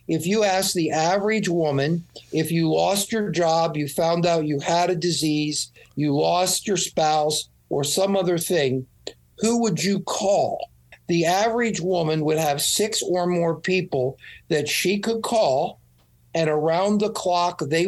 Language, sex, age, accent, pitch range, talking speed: English, male, 50-69, American, 150-180 Hz, 160 wpm